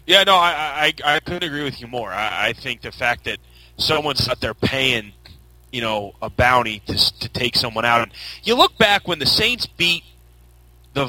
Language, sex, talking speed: English, male, 205 wpm